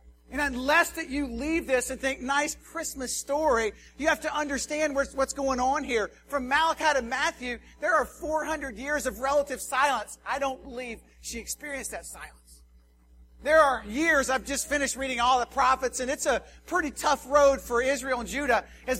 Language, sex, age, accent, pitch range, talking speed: English, male, 40-59, American, 250-300 Hz, 185 wpm